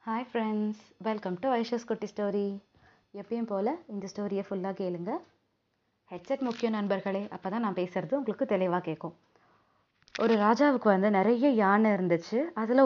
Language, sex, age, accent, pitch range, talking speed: Tamil, female, 20-39, native, 180-230 Hz, 140 wpm